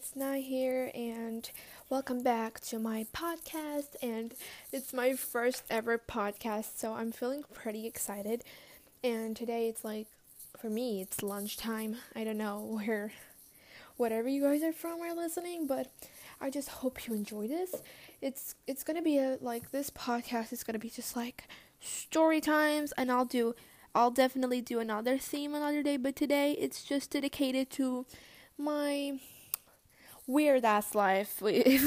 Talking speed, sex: 155 wpm, female